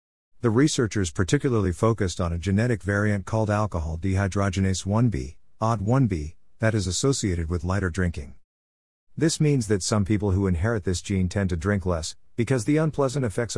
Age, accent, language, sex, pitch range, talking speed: 50-69, American, English, male, 85-110 Hz, 165 wpm